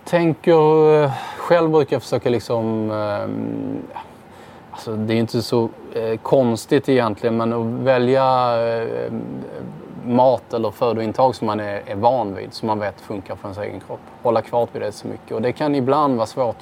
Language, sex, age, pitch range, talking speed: English, male, 20-39, 105-120 Hz, 155 wpm